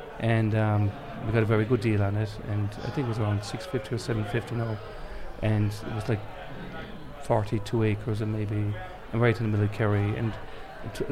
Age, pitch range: 40-59, 105-120 Hz